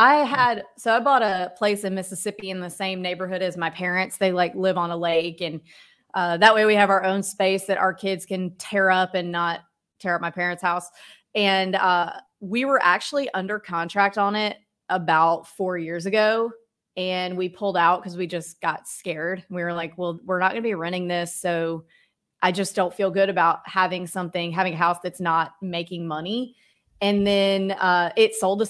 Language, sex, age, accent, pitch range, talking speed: English, female, 30-49, American, 175-205 Hz, 205 wpm